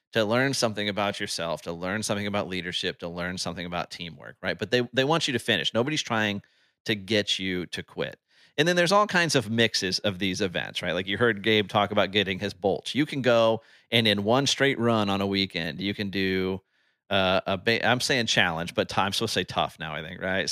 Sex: male